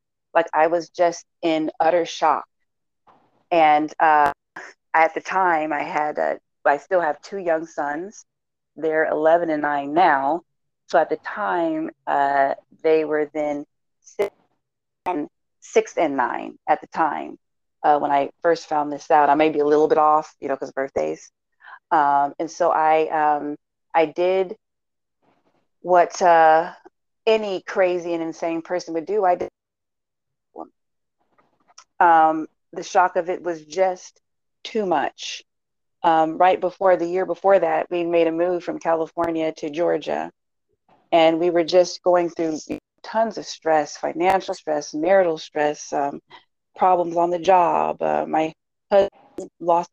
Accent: American